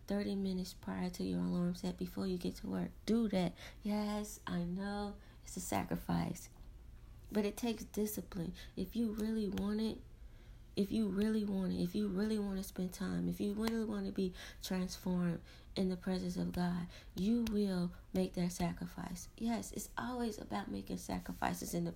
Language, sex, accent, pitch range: English, female, American, 170-225 Hz